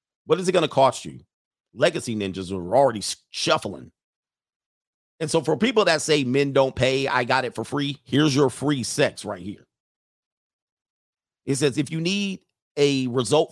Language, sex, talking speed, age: English, male, 175 wpm, 40-59